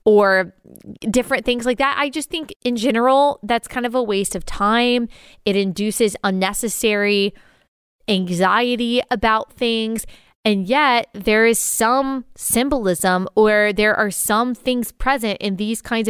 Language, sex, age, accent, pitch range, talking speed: English, female, 20-39, American, 205-255 Hz, 140 wpm